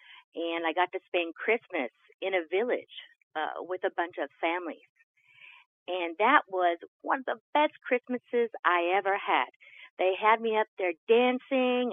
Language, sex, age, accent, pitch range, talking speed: English, female, 50-69, American, 180-260 Hz, 160 wpm